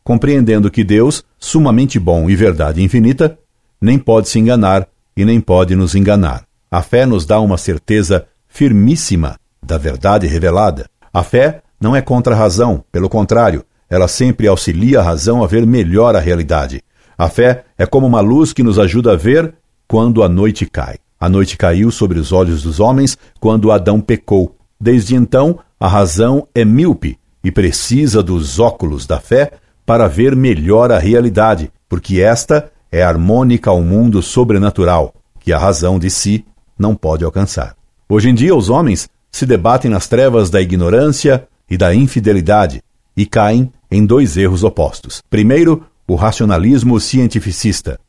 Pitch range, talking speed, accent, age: 90-120 Hz, 160 wpm, Brazilian, 60-79